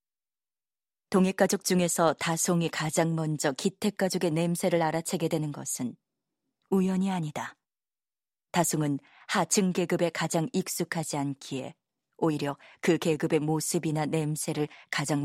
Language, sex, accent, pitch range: Korean, female, native, 155-180 Hz